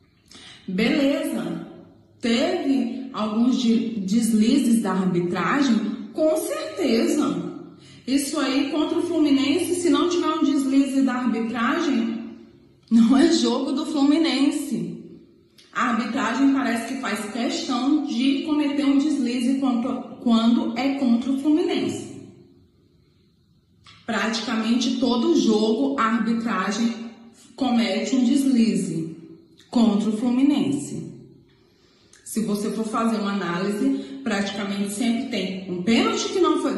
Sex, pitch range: female, 220-285 Hz